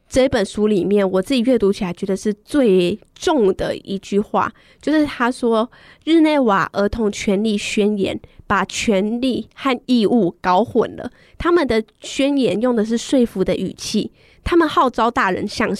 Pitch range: 200-250 Hz